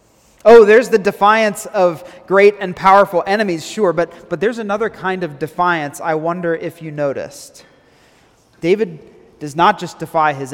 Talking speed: 160 wpm